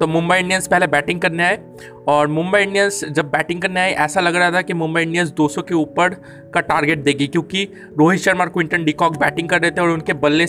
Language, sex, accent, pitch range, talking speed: Hindi, male, native, 155-190 Hz, 230 wpm